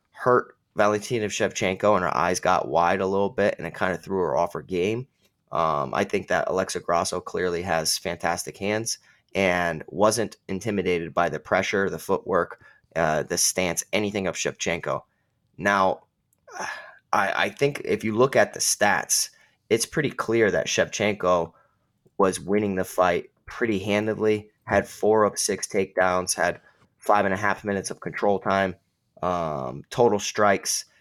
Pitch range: 90-105 Hz